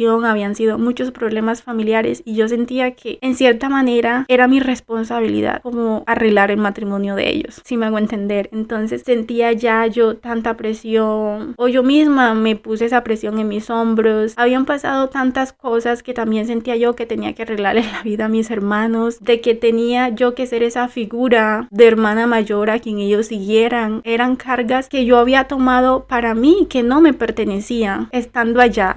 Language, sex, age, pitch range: Spanish, female, 20-39, 215-240 Hz